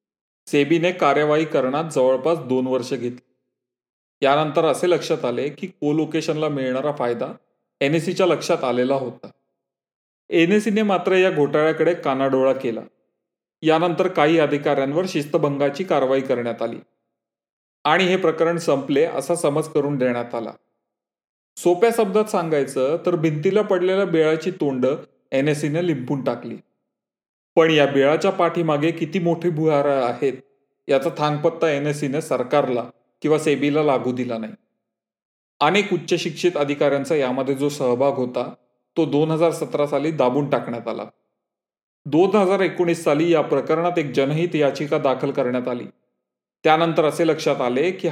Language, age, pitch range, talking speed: Marathi, 30-49, 135-170 Hz, 130 wpm